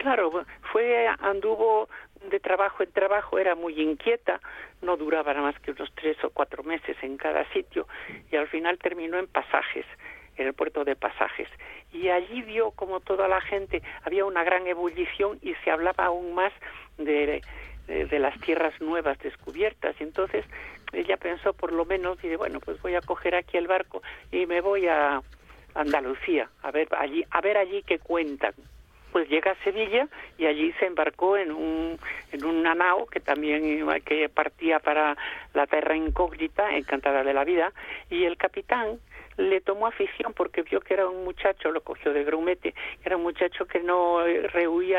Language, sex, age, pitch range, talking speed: Spanish, male, 60-79, 155-200 Hz, 175 wpm